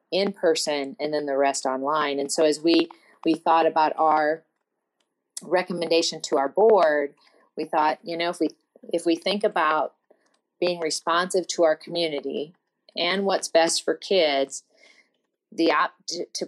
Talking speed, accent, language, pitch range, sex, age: 155 wpm, American, English, 150-175 Hz, female, 40-59